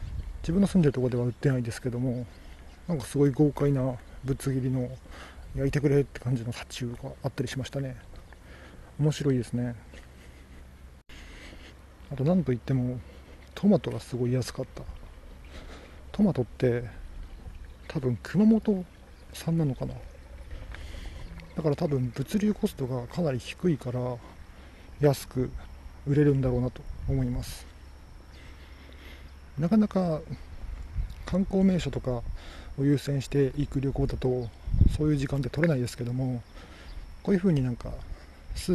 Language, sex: Japanese, male